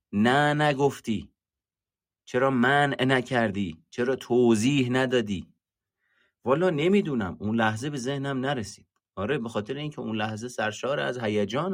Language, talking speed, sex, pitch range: Persian, 125 wpm, male, 90-125 Hz